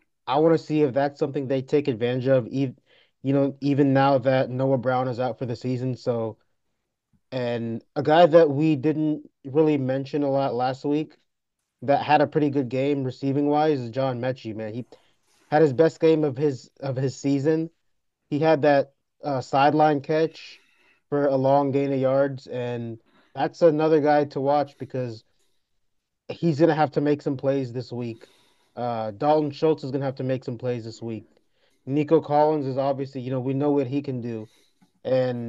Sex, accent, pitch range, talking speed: male, American, 125-145 Hz, 195 wpm